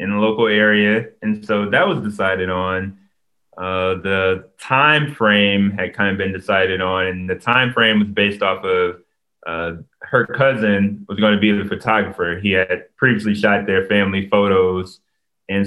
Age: 20-39